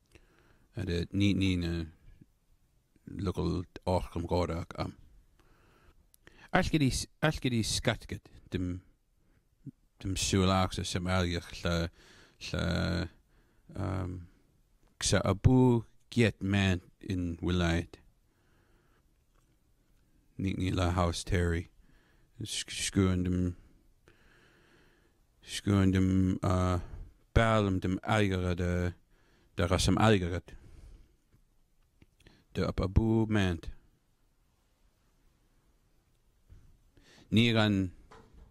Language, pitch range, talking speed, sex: English, 90-105 Hz, 50 wpm, male